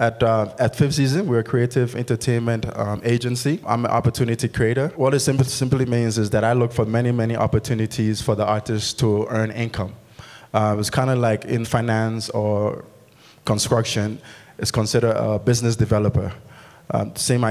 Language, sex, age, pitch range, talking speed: English, male, 20-39, 110-130 Hz, 170 wpm